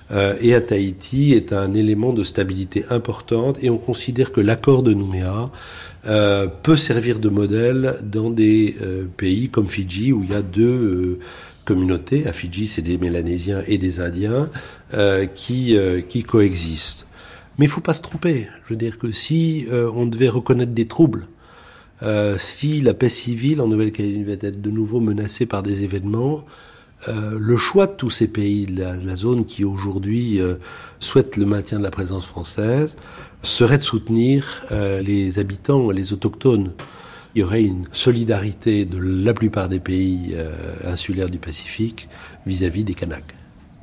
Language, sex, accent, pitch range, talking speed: French, male, French, 95-120 Hz, 175 wpm